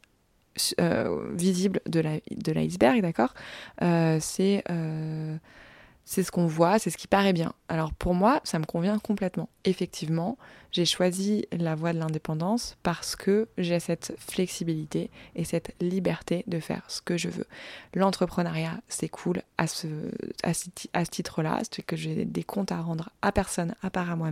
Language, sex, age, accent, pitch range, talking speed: French, female, 20-39, French, 165-190 Hz, 175 wpm